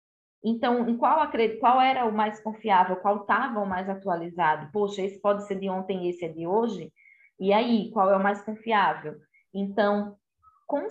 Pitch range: 180-220 Hz